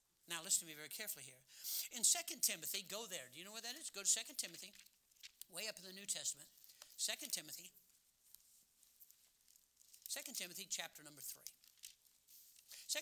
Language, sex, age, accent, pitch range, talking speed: English, male, 60-79, American, 150-205 Hz, 160 wpm